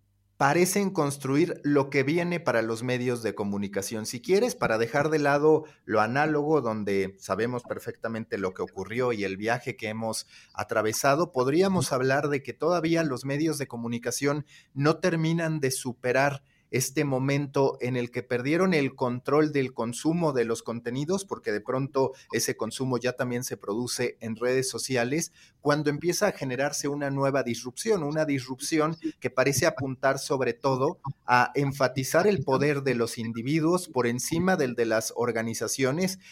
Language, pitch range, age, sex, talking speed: Spanish, 120-150 Hz, 40-59, male, 155 wpm